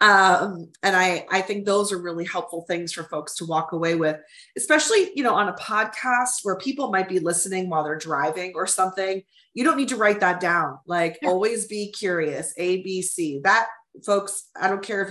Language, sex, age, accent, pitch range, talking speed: English, female, 30-49, American, 170-215 Hz, 200 wpm